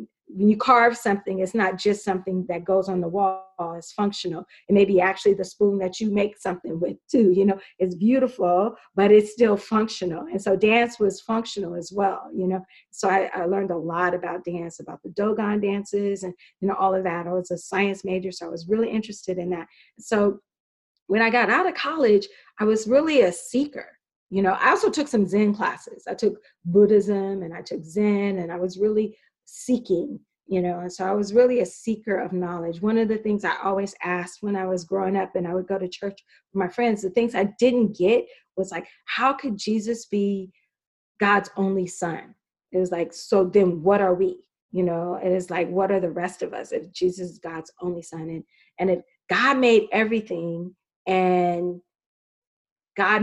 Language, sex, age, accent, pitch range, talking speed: English, female, 40-59, American, 180-210 Hz, 210 wpm